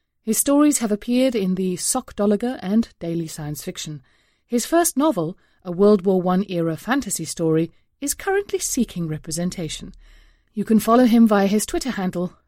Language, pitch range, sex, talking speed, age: English, 165-235 Hz, female, 155 wpm, 30-49